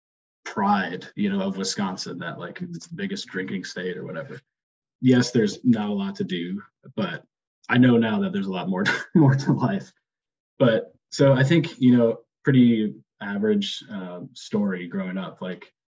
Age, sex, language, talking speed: 20-39, male, English, 175 wpm